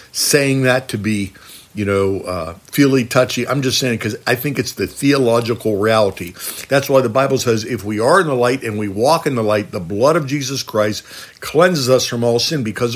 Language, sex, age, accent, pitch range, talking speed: English, male, 50-69, American, 115-145 Hz, 220 wpm